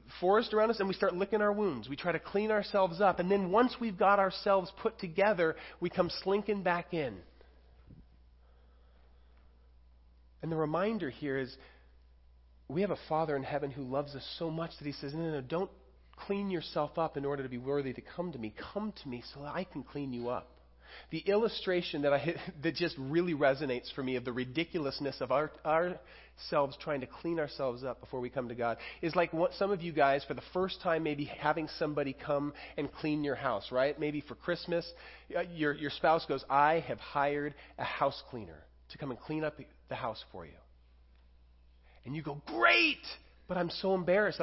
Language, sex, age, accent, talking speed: English, male, 30-49, American, 205 wpm